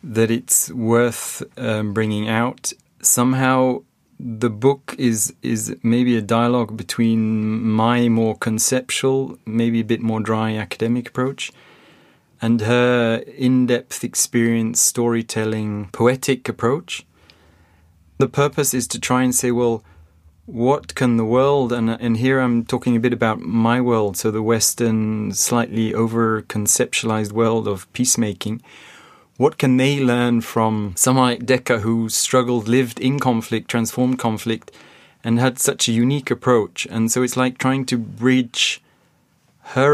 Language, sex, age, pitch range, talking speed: English, male, 30-49, 110-125 Hz, 135 wpm